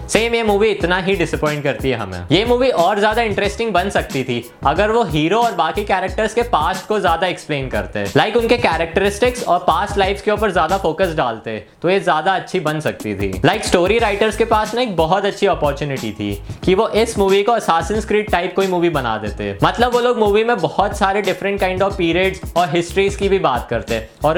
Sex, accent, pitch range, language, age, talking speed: male, native, 155-215 Hz, Hindi, 20-39, 160 wpm